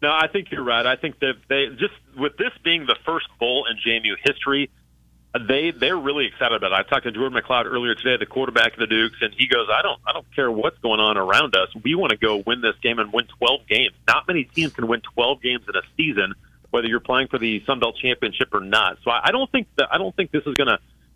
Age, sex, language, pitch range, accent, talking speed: 30-49, male, English, 110-170 Hz, American, 260 wpm